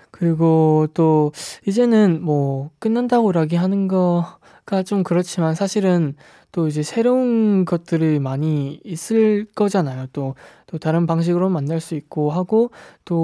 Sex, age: male, 20-39